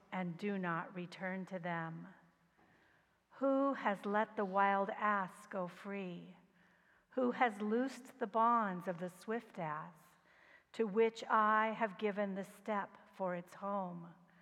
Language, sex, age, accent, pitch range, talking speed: English, female, 50-69, American, 185-225 Hz, 135 wpm